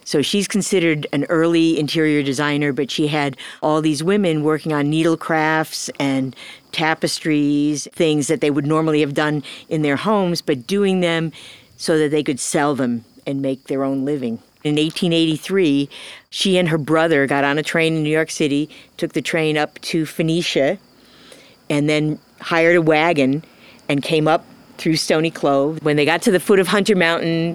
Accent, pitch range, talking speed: American, 140-165 Hz, 180 wpm